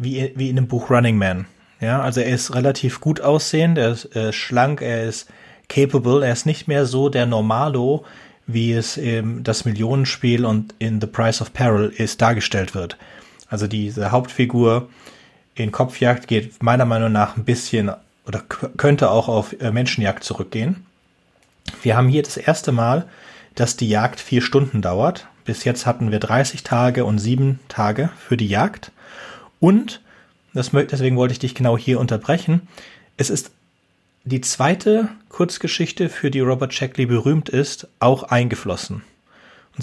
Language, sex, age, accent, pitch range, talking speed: German, male, 30-49, German, 115-145 Hz, 155 wpm